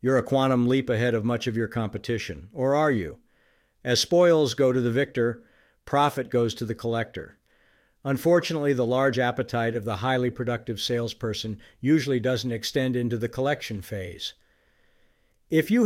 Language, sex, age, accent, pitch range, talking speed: English, male, 50-69, American, 105-150 Hz, 160 wpm